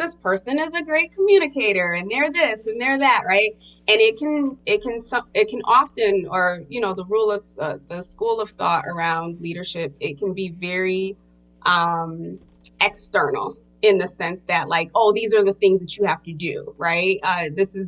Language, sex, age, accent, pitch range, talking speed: English, female, 20-39, American, 170-210 Hz, 200 wpm